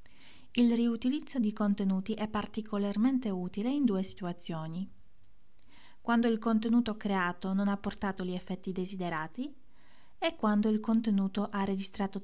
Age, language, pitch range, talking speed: 20-39, Italian, 190-235 Hz, 125 wpm